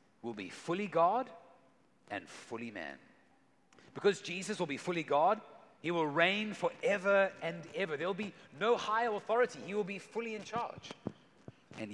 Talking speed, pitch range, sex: 155 wpm, 145-195 Hz, male